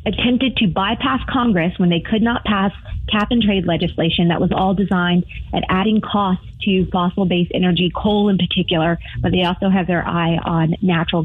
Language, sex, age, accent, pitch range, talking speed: English, female, 30-49, American, 185-230 Hz, 185 wpm